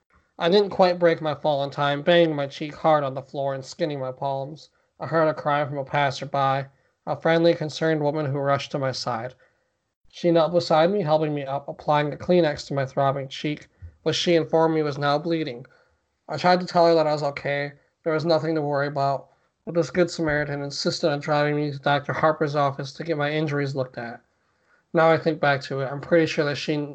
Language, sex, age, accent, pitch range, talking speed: English, male, 20-39, American, 140-160 Hz, 225 wpm